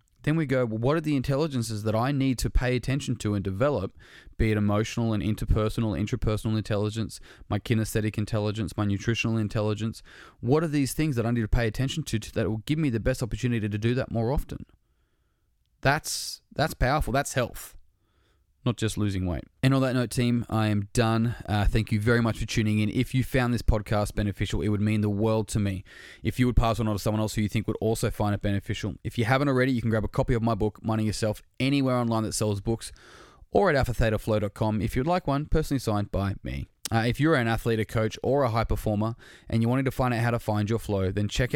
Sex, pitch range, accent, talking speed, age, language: male, 105-120 Hz, Australian, 235 wpm, 20-39, English